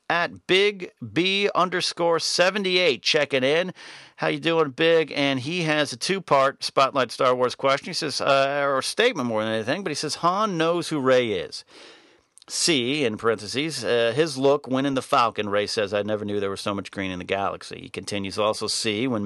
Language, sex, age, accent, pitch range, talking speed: English, male, 40-59, American, 105-160 Hz, 210 wpm